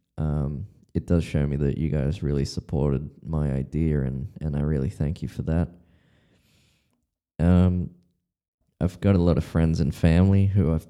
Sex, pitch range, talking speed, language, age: male, 75-90 Hz, 170 wpm, English, 20-39